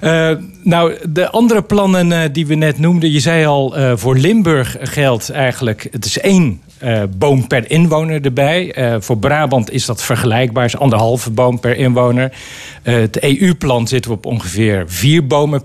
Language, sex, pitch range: Dutch, male, 120-145 Hz